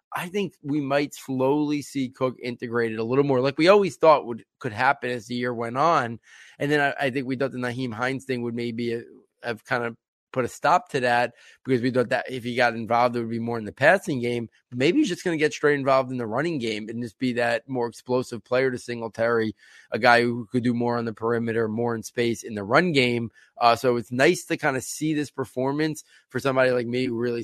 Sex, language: male, English